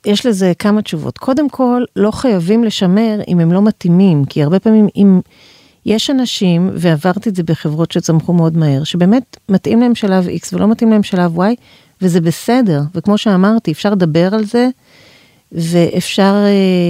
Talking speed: 165 wpm